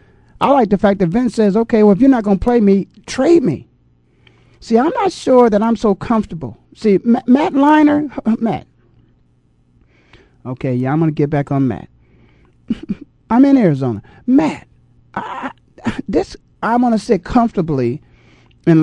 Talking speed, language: 170 wpm, English